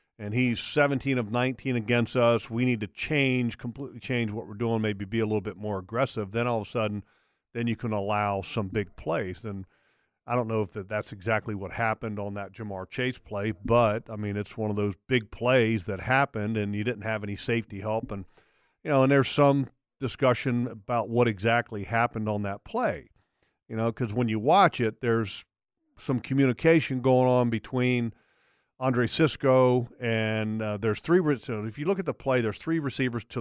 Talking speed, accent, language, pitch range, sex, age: 200 wpm, American, English, 105-125 Hz, male, 50-69